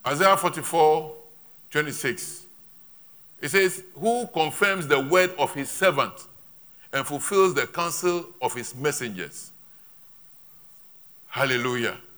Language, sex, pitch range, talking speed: English, male, 110-180 Hz, 100 wpm